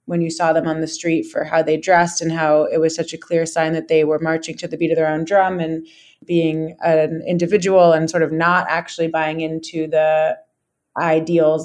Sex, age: female, 20-39